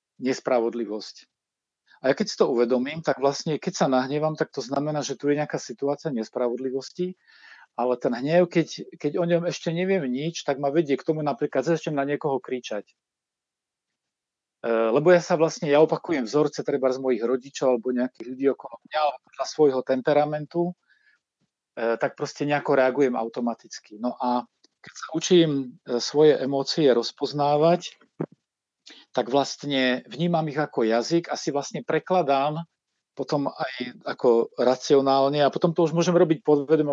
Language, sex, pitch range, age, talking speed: Slovak, male, 130-155 Hz, 40-59, 155 wpm